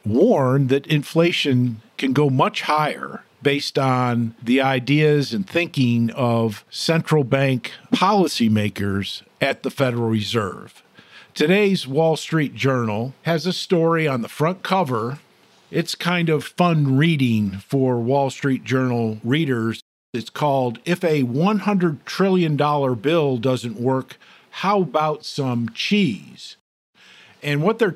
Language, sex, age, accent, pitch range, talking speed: English, male, 50-69, American, 130-175 Hz, 125 wpm